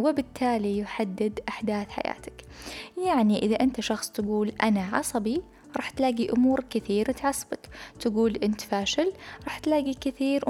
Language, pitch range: Arabic, 210-265 Hz